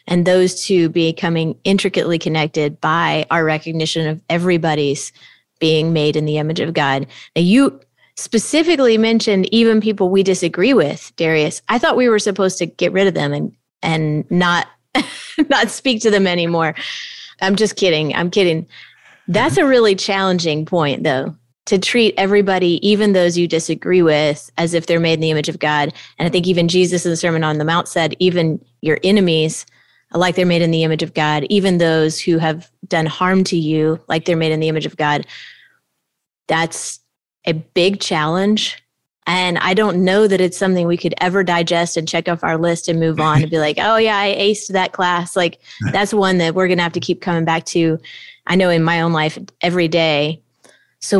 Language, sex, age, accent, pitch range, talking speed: English, female, 30-49, American, 160-190 Hz, 195 wpm